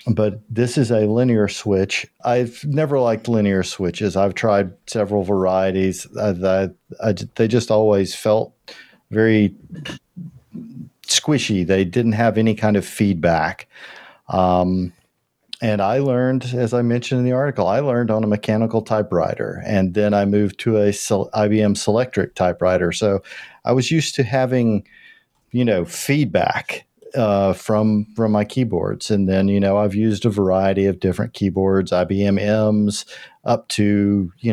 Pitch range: 95-120 Hz